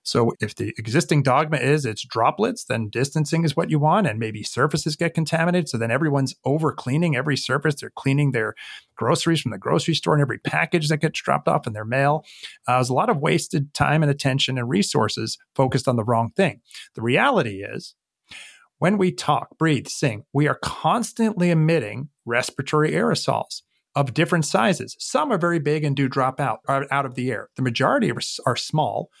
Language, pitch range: English, 125-165 Hz